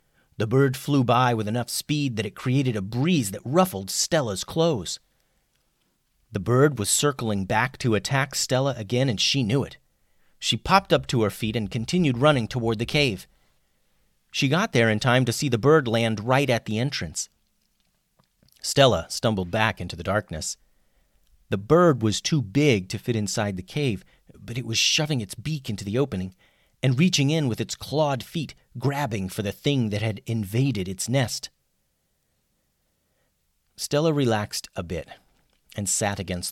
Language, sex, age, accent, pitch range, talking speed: English, male, 40-59, American, 95-130 Hz, 170 wpm